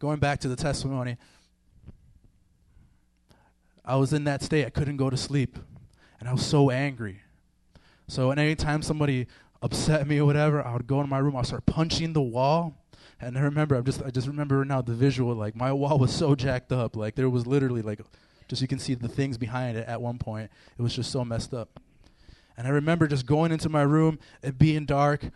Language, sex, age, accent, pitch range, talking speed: English, male, 20-39, American, 110-160 Hz, 210 wpm